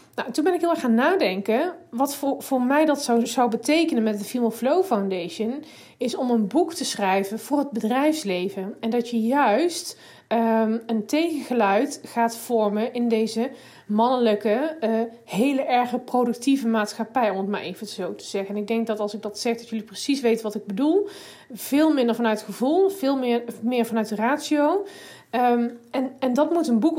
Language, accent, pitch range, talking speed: Dutch, Dutch, 220-270 Hz, 190 wpm